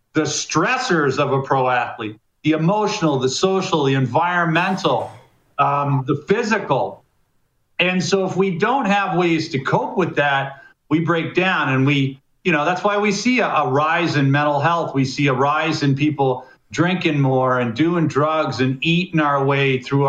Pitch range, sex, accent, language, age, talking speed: 135-175 Hz, male, American, English, 50-69, 175 wpm